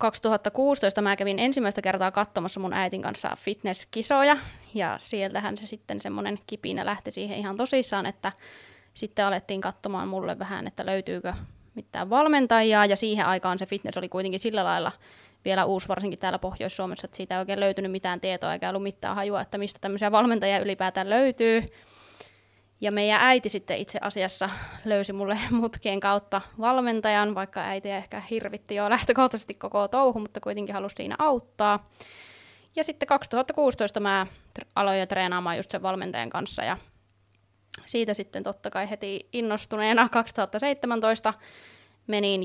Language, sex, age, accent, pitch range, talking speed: Finnish, female, 20-39, native, 190-220 Hz, 150 wpm